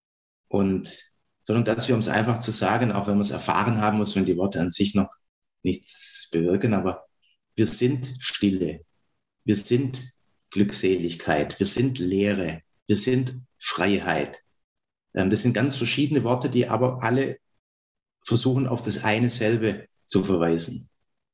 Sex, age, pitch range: male, 50-69, 105-130 Hz